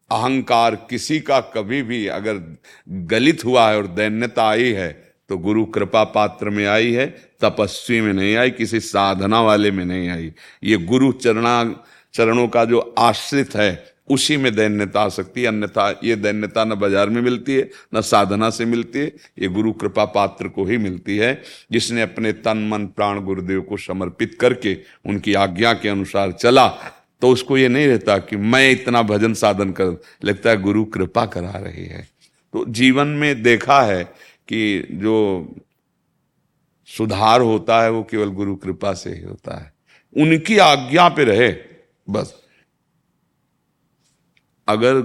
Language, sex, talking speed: Hindi, male, 160 wpm